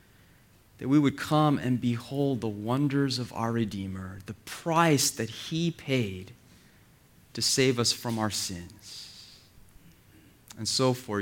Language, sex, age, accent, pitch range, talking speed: English, male, 30-49, American, 105-140 Hz, 135 wpm